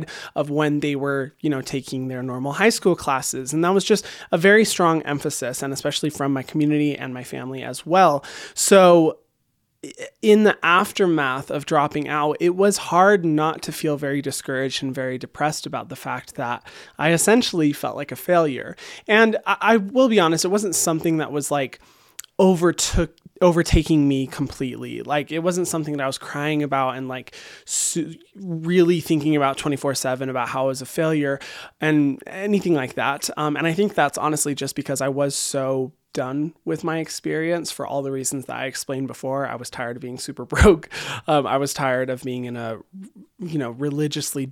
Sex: male